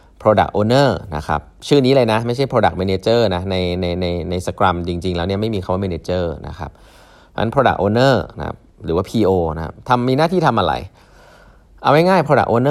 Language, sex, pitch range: Thai, male, 85-115 Hz